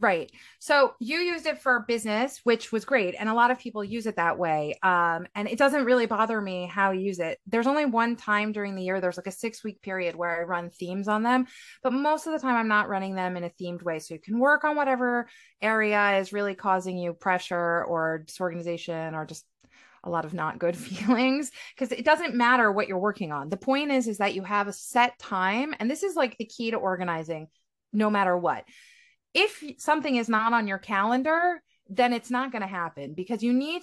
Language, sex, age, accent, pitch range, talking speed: English, female, 30-49, American, 190-250 Hz, 230 wpm